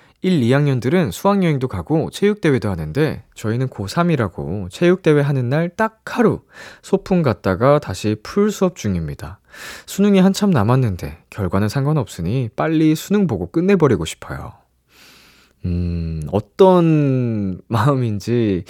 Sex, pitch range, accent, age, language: male, 100-160 Hz, native, 20-39, Korean